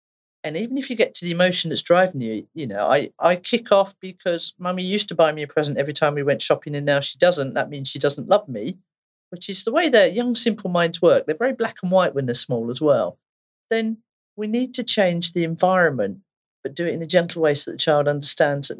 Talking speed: 250 wpm